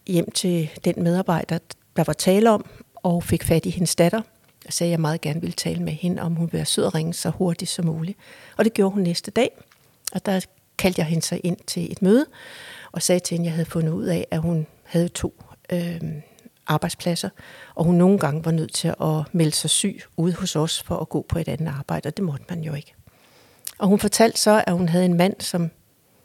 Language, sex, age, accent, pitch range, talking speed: Danish, female, 60-79, native, 170-210 Hz, 235 wpm